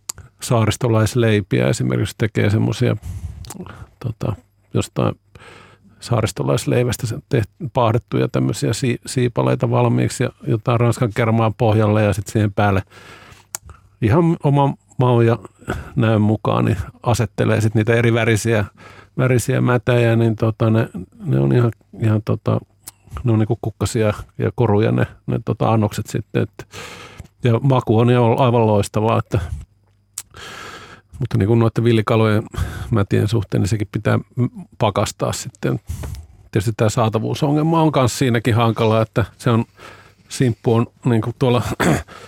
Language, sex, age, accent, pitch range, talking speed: Finnish, male, 50-69, native, 105-120 Hz, 115 wpm